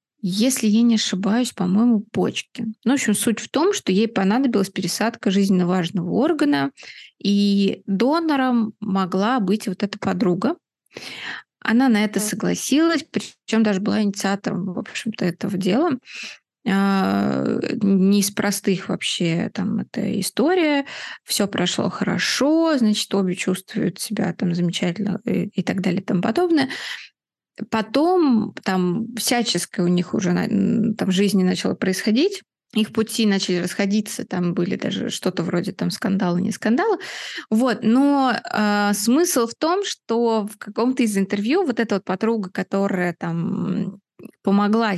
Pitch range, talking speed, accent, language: 190-230 Hz, 135 wpm, native, Russian